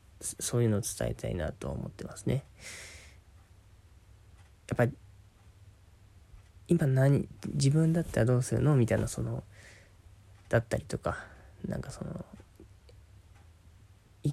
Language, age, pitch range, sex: Japanese, 20-39, 95-135 Hz, male